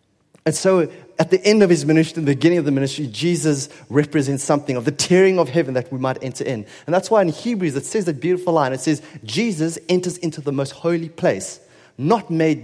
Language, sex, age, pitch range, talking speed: English, male, 30-49, 125-165 Hz, 225 wpm